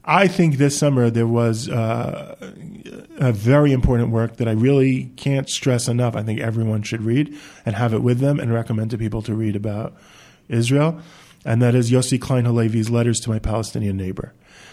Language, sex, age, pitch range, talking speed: English, male, 40-59, 115-150 Hz, 185 wpm